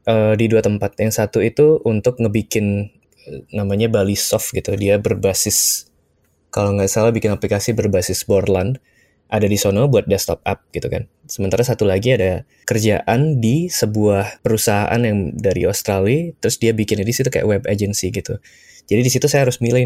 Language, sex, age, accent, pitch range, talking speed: Indonesian, male, 20-39, native, 100-120 Hz, 165 wpm